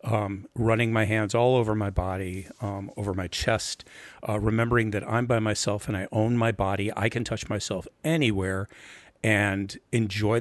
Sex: male